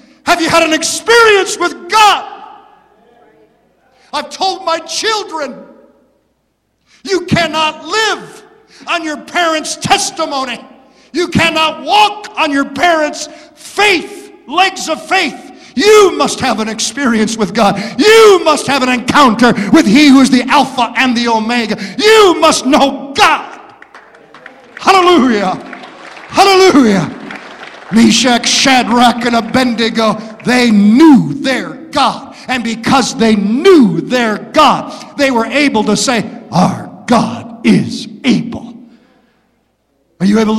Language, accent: English, American